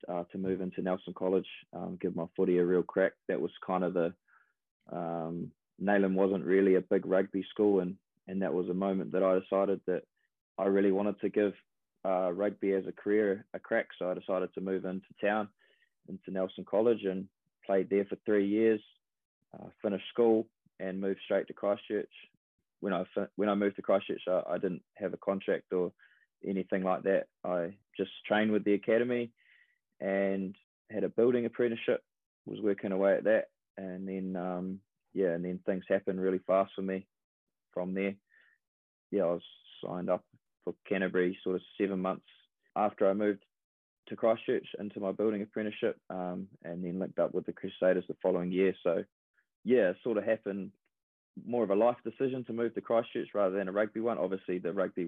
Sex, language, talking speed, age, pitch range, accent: male, English, 185 wpm, 20-39, 95-105 Hz, Australian